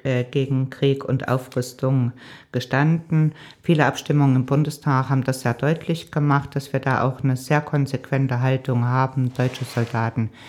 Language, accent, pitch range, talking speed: German, German, 120-135 Hz, 145 wpm